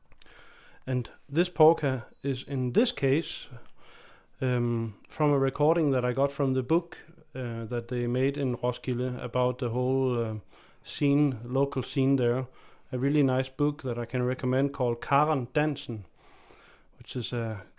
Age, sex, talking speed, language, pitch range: 30-49, male, 150 wpm, English, 120-145 Hz